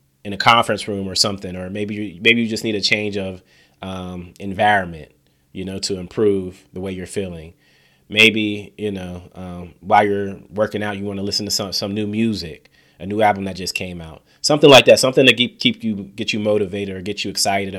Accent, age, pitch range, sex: American, 30-49, 90-105 Hz, male